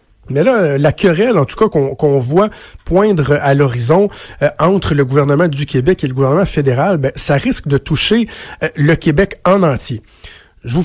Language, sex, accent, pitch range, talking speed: French, male, Canadian, 135-170 Hz, 185 wpm